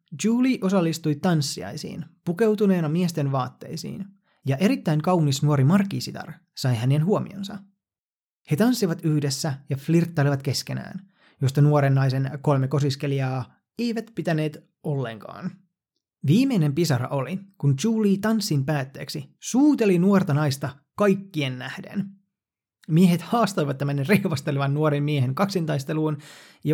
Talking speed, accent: 110 wpm, native